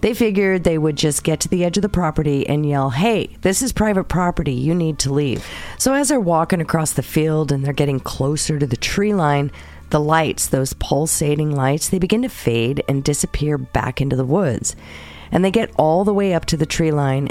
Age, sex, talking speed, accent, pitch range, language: 40-59, female, 220 wpm, American, 130-170 Hz, English